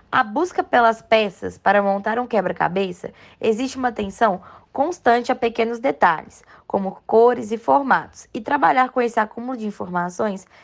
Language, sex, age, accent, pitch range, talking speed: Portuguese, female, 10-29, Brazilian, 215-270 Hz, 145 wpm